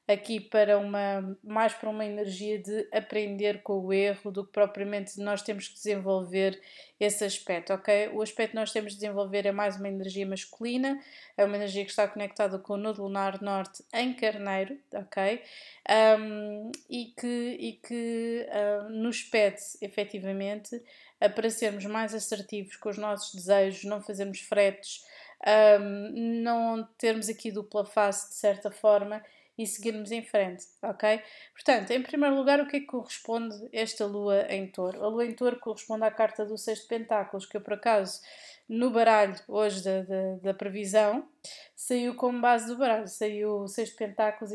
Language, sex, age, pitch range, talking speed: Portuguese, female, 20-39, 205-230 Hz, 170 wpm